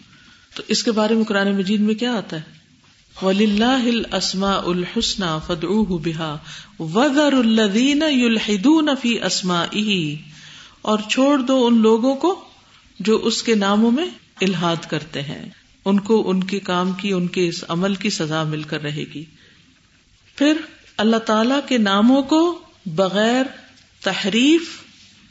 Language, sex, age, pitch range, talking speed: Urdu, female, 50-69, 175-225 Hz, 140 wpm